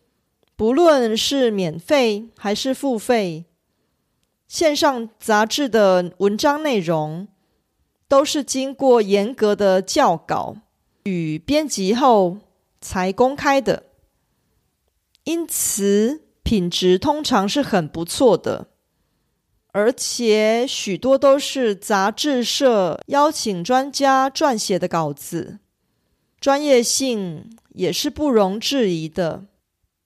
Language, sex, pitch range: Korean, female, 190-265 Hz